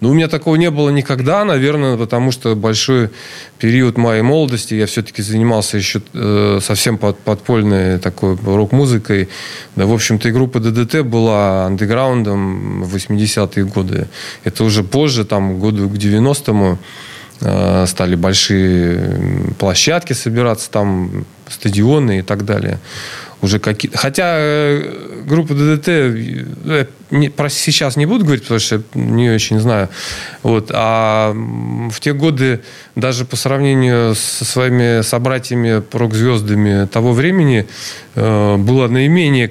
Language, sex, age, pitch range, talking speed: Russian, male, 20-39, 105-135 Hz, 130 wpm